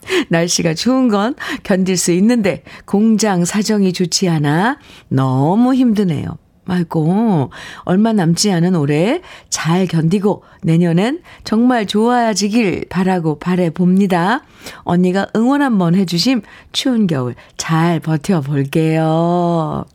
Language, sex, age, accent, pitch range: Korean, female, 50-69, native, 160-205 Hz